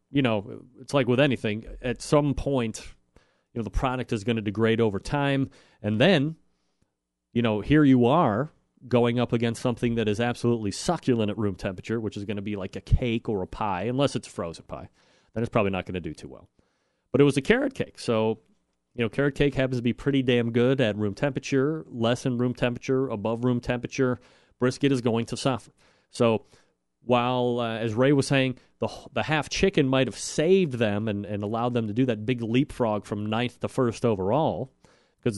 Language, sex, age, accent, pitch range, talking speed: English, male, 30-49, American, 110-135 Hz, 210 wpm